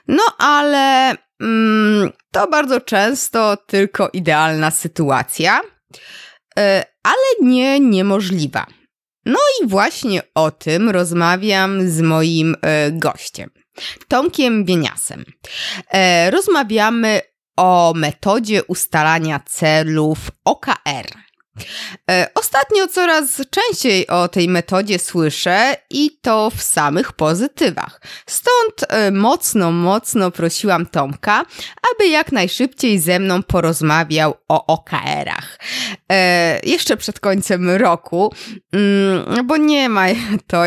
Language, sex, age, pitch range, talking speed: Polish, female, 20-39, 160-220 Hz, 90 wpm